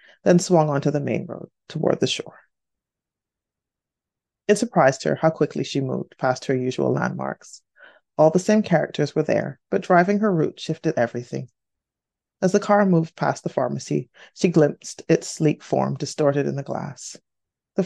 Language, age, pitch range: English, 30-49, 135-185 Hz